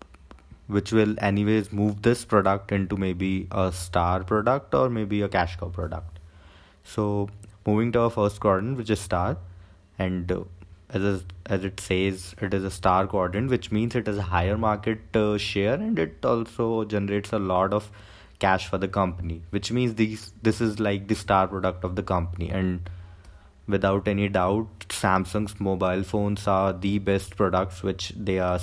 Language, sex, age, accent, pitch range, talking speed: English, male, 20-39, Indian, 90-105 Hz, 175 wpm